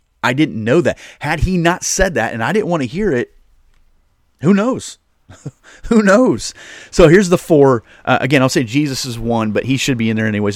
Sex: male